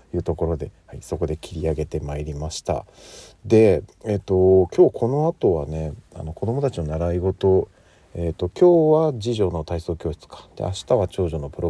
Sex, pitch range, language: male, 80-110 Hz, Japanese